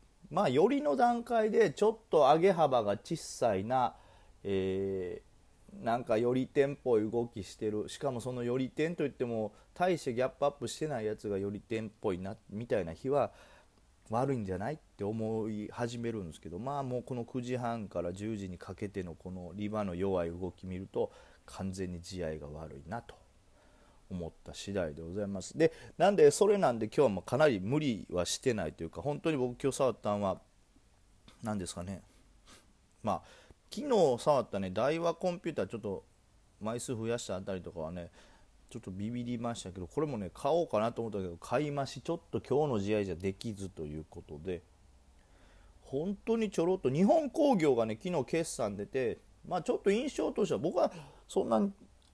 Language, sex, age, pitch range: Japanese, male, 30-49, 95-140 Hz